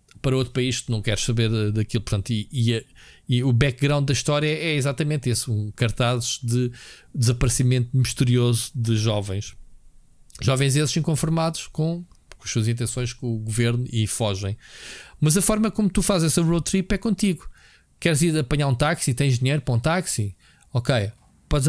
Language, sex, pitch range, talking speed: Portuguese, male, 120-165 Hz, 170 wpm